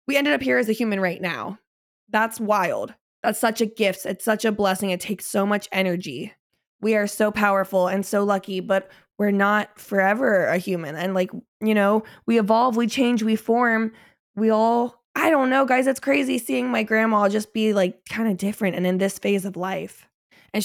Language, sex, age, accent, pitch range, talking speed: English, female, 20-39, American, 190-230 Hz, 205 wpm